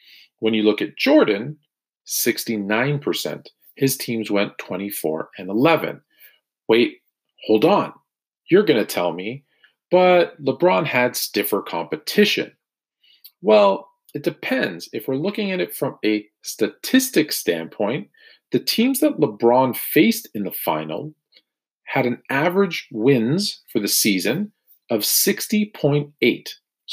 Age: 40-59